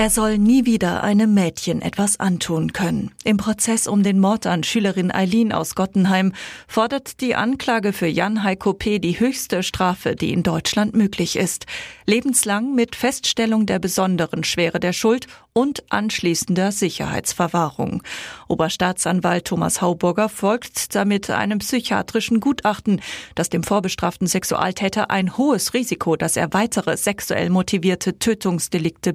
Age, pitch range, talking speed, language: 40-59, 180-220 Hz, 130 wpm, German